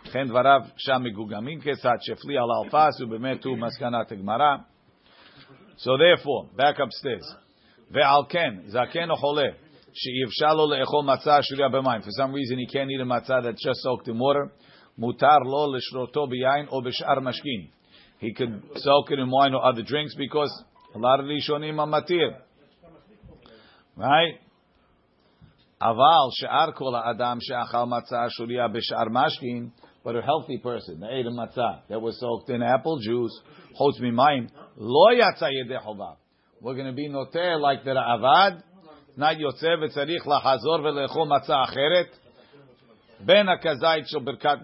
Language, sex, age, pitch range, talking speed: English, male, 50-69, 120-150 Hz, 90 wpm